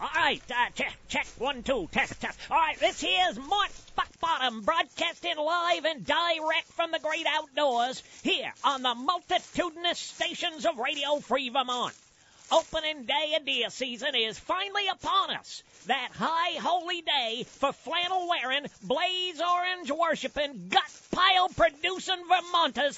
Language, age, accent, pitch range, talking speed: English, 40-59, American, 260-340 Hz, 135 wpm